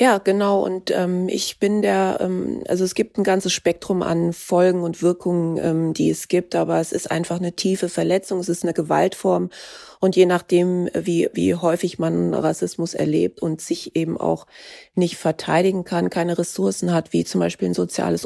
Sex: female